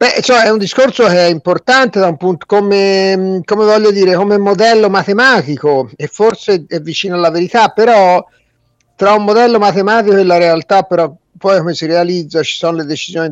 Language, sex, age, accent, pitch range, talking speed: Italian, male, 50-69, native, 140-200 Hz, 175 wpm